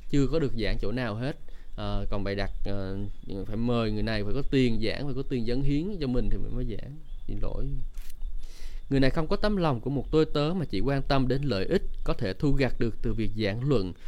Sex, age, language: male, 20-39, Vietnamese